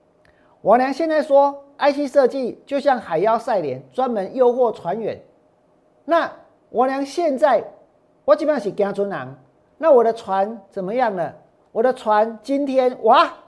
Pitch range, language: 190-255 Hz, Chinese